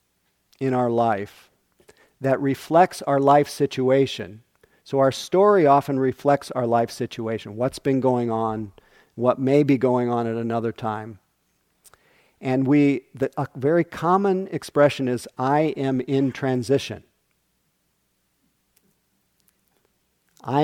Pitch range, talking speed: 125-150 Hz, 120 wpm